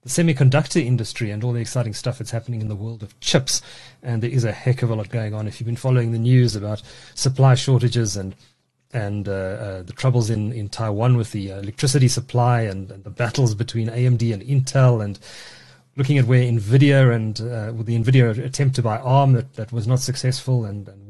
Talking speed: 215 wpm